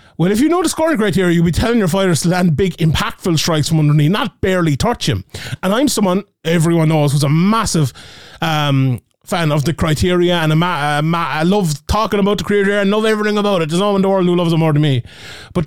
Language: English